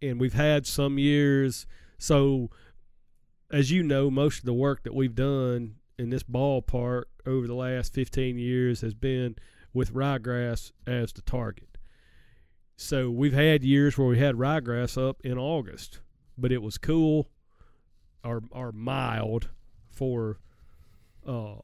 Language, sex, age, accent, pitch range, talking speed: English, male, 40-59, American, 115-145 Hz, 140 wpm